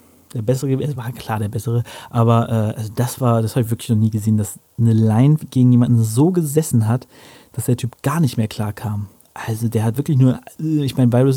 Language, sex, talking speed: German, male, 225 wpm